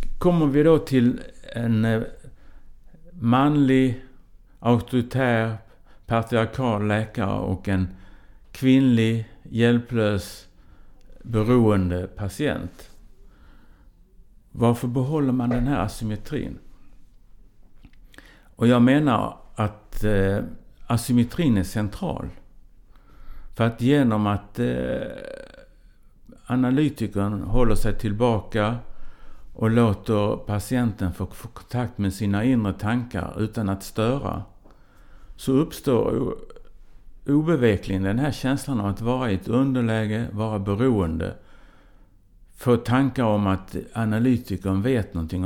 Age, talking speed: 60-79, 90 wpm